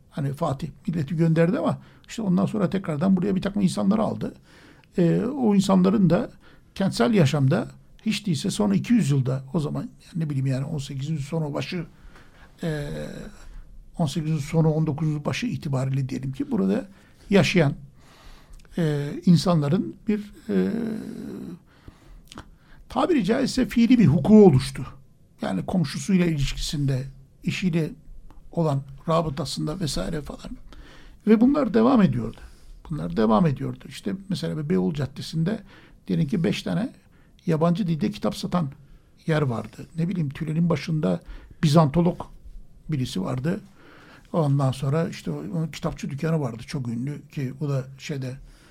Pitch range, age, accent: 140-190 Hz, 60-79, native